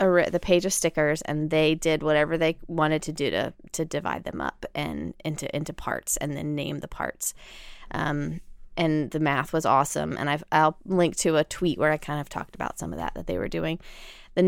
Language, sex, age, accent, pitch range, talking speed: English, female, 20-39, American, 145-190 Hz, 230 wpm